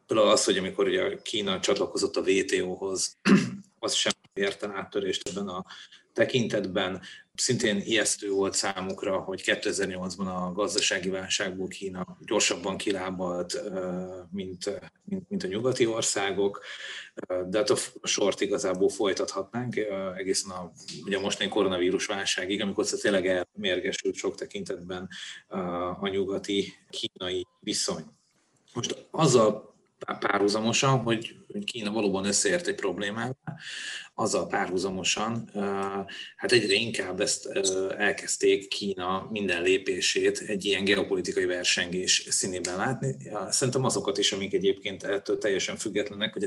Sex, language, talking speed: male, Hungarian, 115 wpm